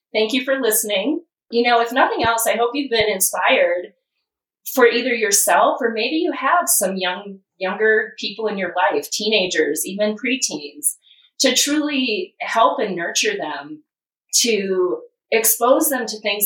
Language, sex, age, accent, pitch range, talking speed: English, female, 30-49, American, 190-255 Hz, 155 wpm